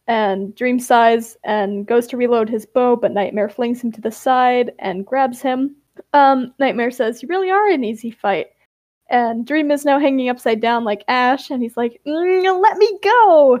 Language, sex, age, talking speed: English, female, 10-29, 190 wpm